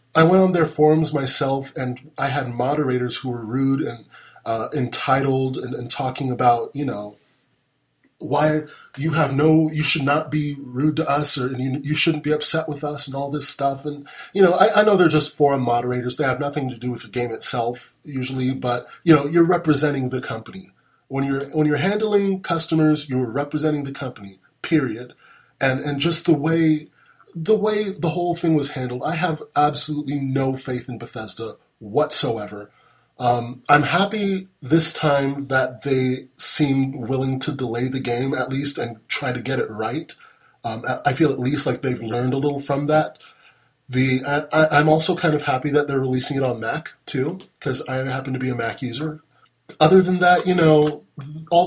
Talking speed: 190 wpm